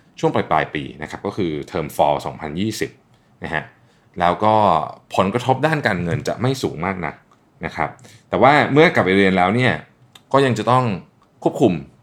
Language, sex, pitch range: Thai, male, 95-125 Hz